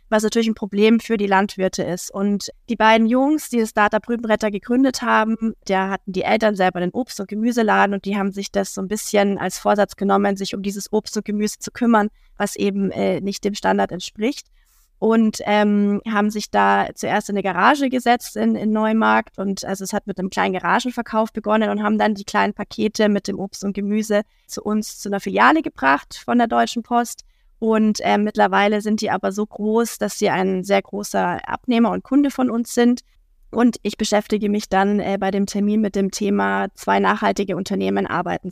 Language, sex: German, female